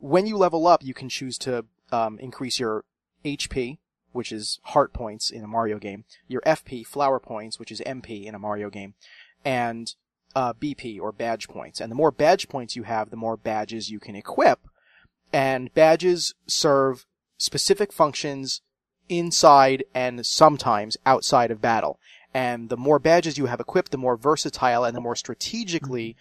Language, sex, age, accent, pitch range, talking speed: English, male, 30-49, American, 120-155 Hz, 170 wpm